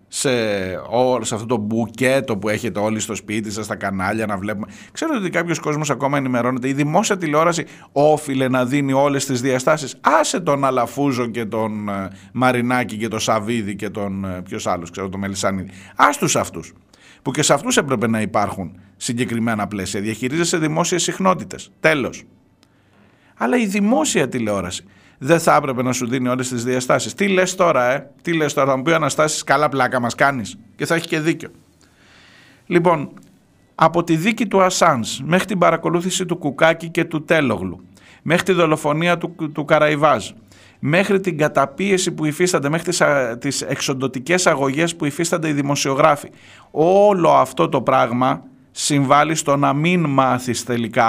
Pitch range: 115-165 Hz